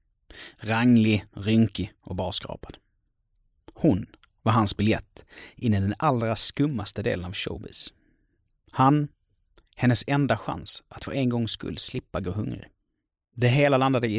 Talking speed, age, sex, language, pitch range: 135 wpm, 30-49, male, Swedish, 105-135 Hz